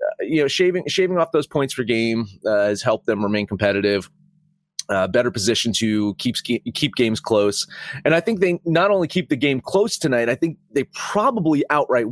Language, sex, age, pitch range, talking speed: English, male, 30-49, 115-155 Hz, 200 wpm